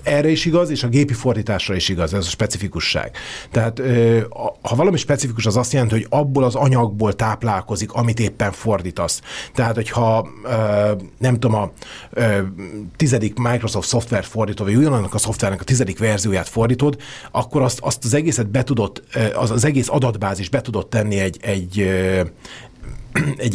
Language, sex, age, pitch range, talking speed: Hungarian, male, 30-49, 105-135 Hz, 150 wpm